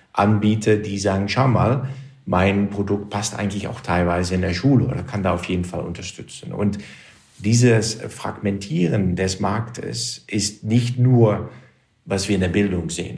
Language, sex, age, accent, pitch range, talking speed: German, male, 50-69, German, 100-115 Hz, 160 wpm